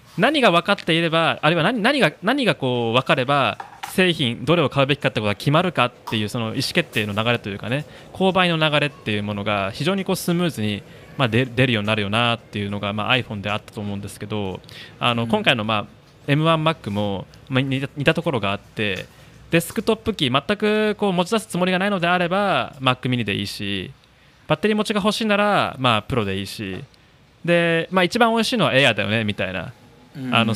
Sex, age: male, 20-39